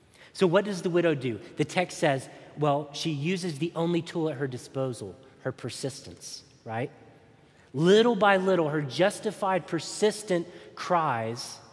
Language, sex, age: English, male, 30-49